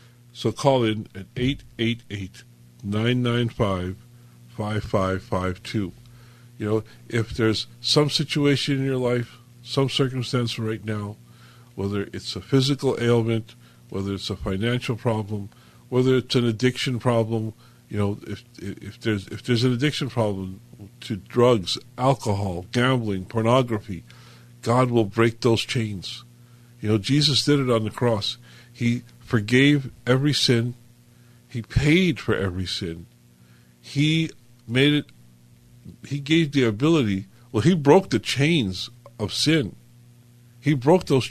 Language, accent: English, American